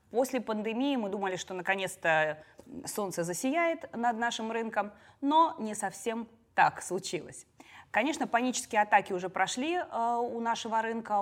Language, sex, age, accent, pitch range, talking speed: Russian, female, 20-39, native, 175-235 Hz, 130 wpm